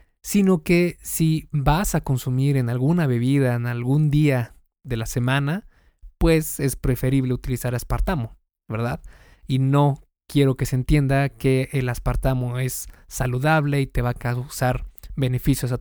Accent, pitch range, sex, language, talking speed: Mexican, 125-150 Hz, male, Spanish, 150 wpm